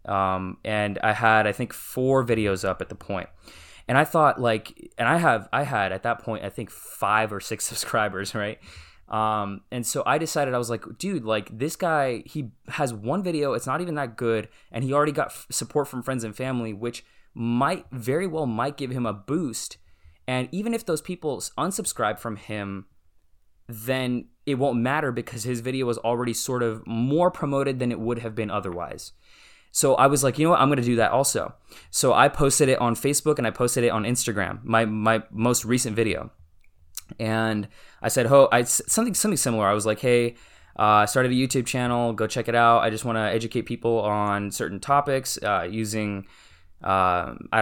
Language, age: English, 20-39